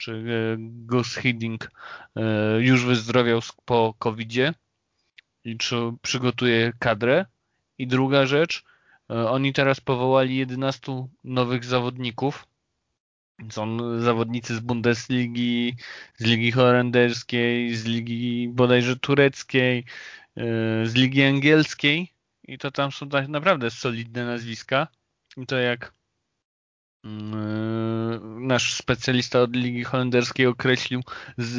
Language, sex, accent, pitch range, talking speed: Polish, male, native, 115-140 Hz, 95 wpm